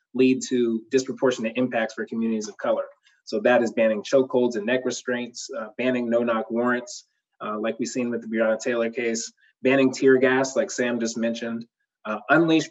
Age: 20-39